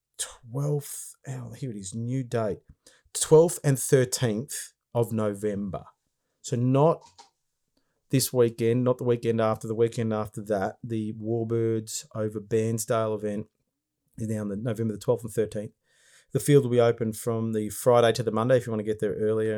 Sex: male